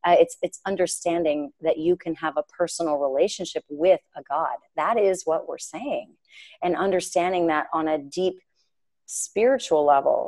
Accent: American